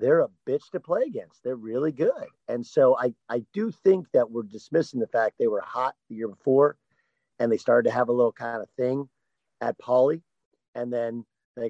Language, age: English, 50-69